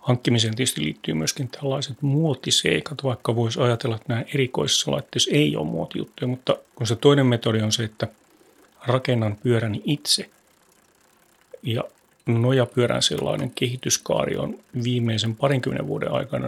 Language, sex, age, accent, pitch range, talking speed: Finnish, male, 30-49, native, 110-135 Hz, 130 wpm